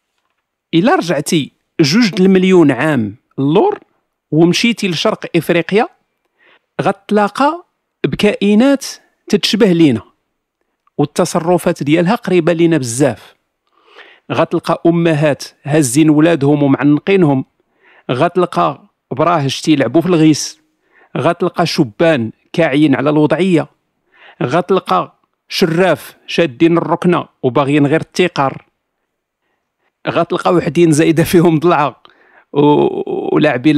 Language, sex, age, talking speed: Arabic, male, 50-69, 80 wpm